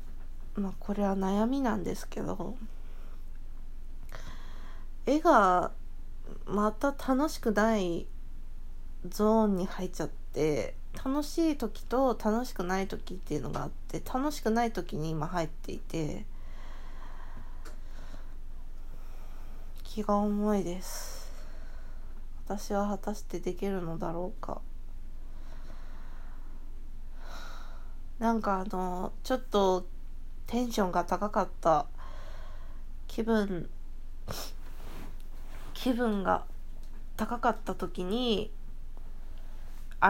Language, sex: Japanese, female